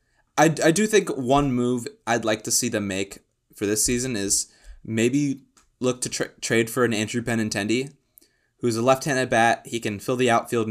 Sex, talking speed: male, 185 wpm